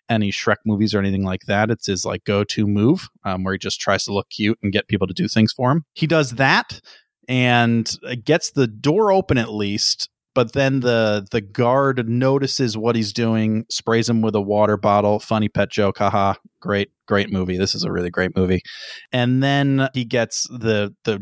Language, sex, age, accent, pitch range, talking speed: English, male, 30-49, American, 105-125 Hz, 205 wpm